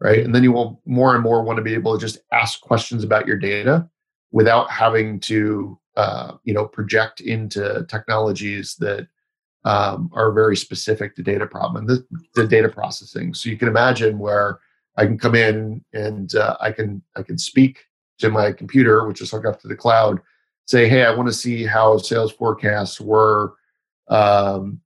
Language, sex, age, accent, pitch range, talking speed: English, male, 40-59, American, 105-125 Hz, 185 wpm